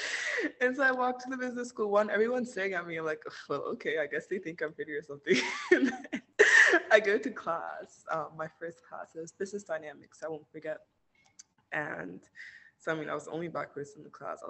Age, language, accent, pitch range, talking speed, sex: 20-39, English, American, 155-240 Hz, 215 wpm, female